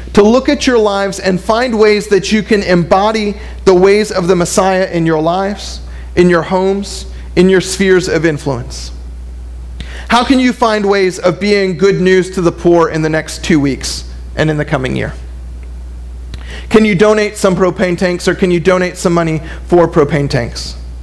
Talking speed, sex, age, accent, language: 185 wpm, male, 40-59, American, English